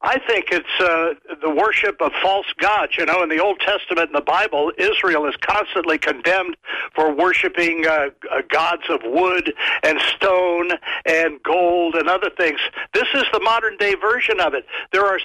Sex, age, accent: male, 60-79, American